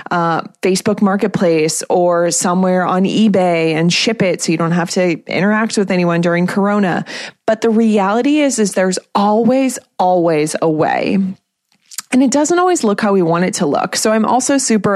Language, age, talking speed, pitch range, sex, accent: English, 20-39, 180 wpm, 180-230 Hz, female, American